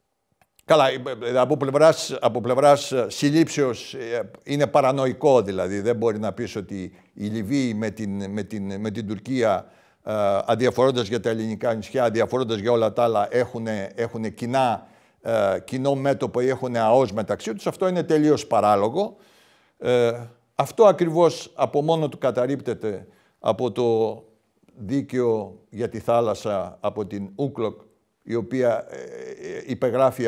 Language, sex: Greek, male